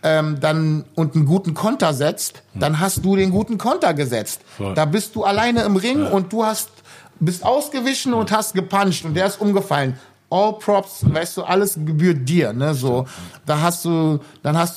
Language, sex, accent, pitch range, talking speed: German, male, German, 145-180 Hz, 185 wpm